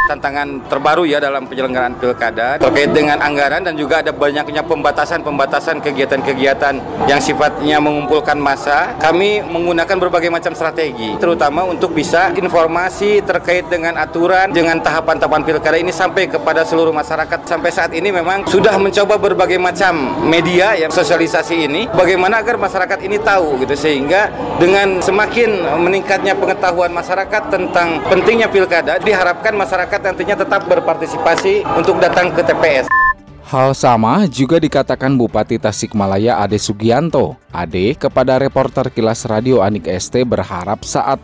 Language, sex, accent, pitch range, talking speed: Indonesian, male, native, 120-175 Hz, 135 wpm